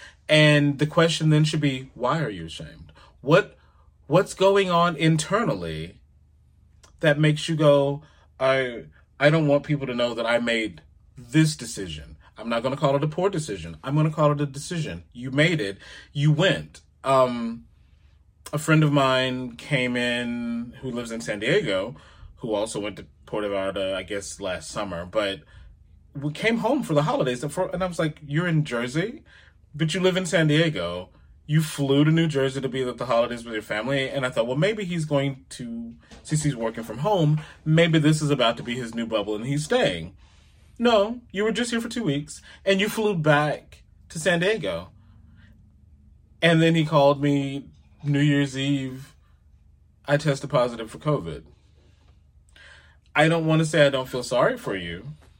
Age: 30-49